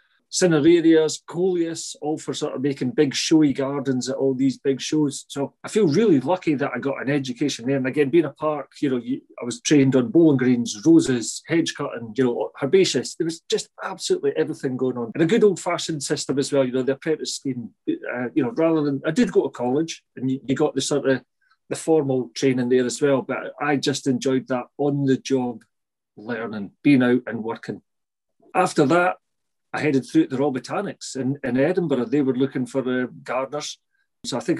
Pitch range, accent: 130-165 Hz, British